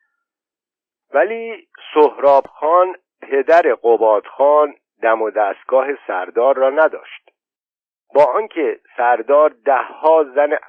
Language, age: Persian, 50-69